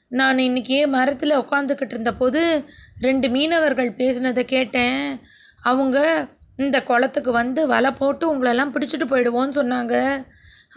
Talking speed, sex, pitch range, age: 110 wpm, female, 240-305 Hz, 20-39